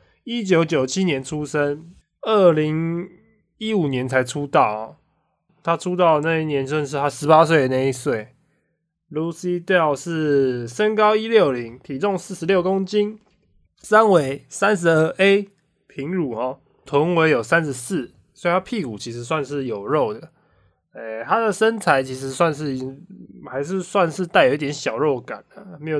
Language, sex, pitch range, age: English, male, 135-185 Hz, 20-39